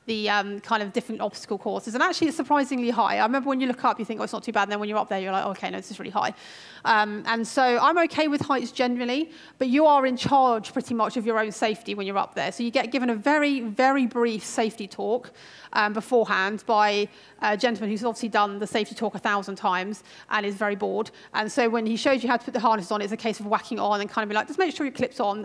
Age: 30-49